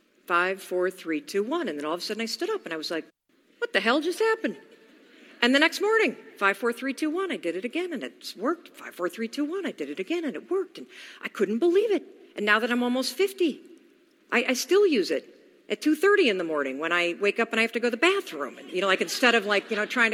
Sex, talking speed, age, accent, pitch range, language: female, 285 wpm, 50-69, American, 215-315 Hz, English